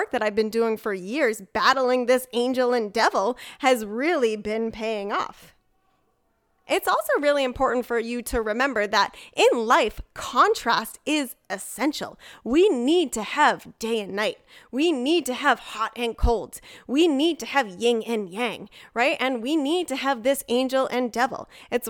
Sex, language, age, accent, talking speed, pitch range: female, English, 10-29, American, 170 wpm, 230-285 Hz